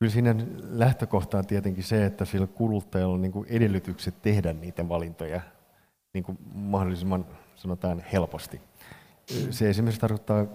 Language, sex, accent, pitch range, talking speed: Finnish, male, native, 90-105 Hz, 115 wpm